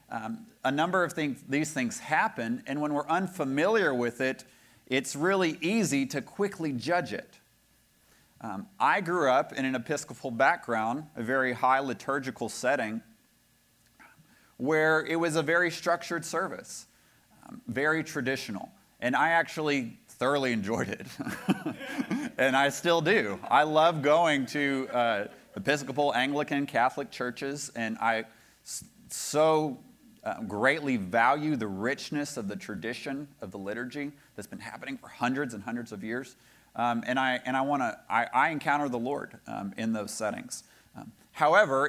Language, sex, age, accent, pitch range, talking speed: English, male, 30-49, American, 120-155 Hz, 150 wpm